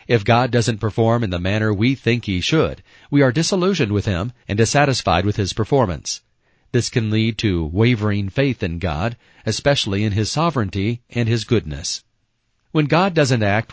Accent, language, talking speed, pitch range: American, English, 175 wpm, 105-130 Hz